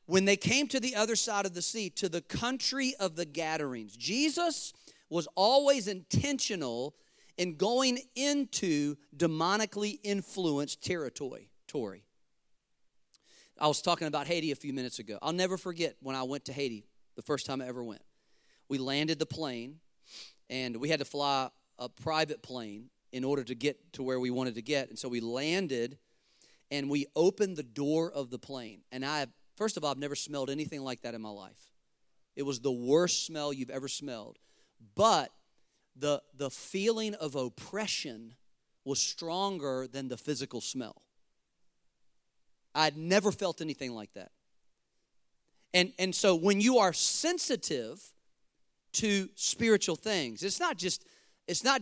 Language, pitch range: English, 135-190 Hz